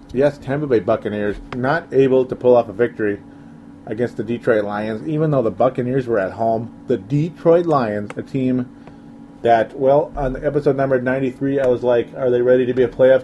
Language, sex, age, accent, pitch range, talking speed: English, male, 40-59, American, 115-135 Hz, 195 wpm